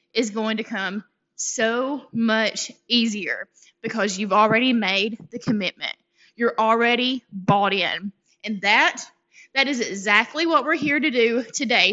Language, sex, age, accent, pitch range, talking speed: English, female, 20-39, American, 220-290 Hz, 140 wpm